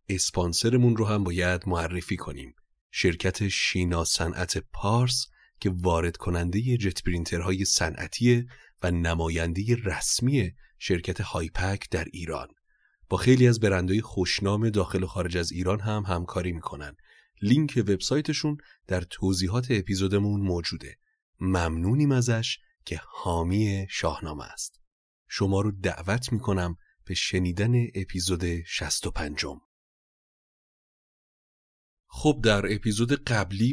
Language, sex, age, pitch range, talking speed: Persian, male, 30-49, 90-110 Hz, 110 wpm